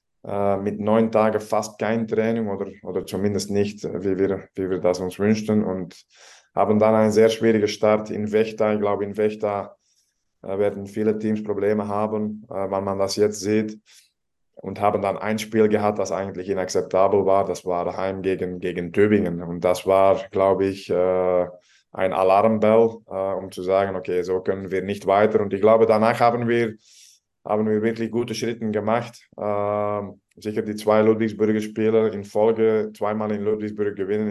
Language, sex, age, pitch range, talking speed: German, male, 20-39, 100-110 Hz, 170 wpm